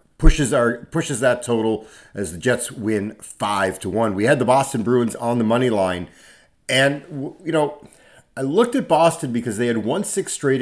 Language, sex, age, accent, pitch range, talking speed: English, male, 40-59, American, 100-130 Hz, 190 wpm